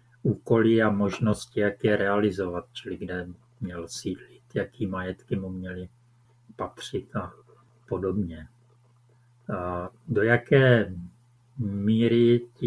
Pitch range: 100-120 Hz